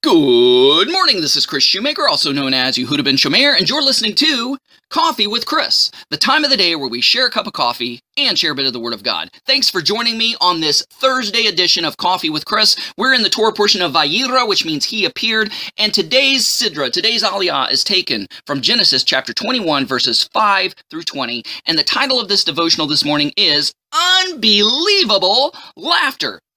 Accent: American